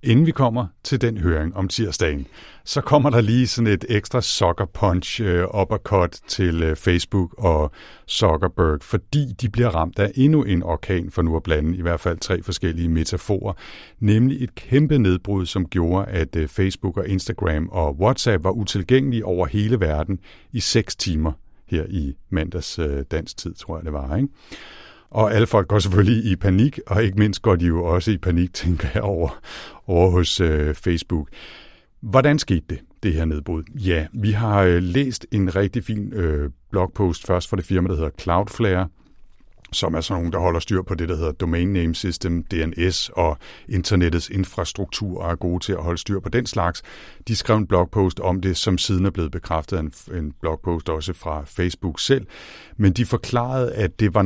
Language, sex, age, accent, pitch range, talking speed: Danish, male, 60-79, native, 85-105 Hz, 190 wpm